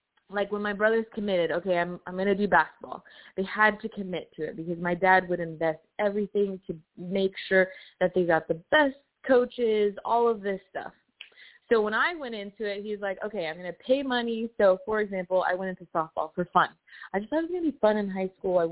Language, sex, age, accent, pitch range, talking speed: English, female, 20-39, American, 185-225 Hz, 235 wpm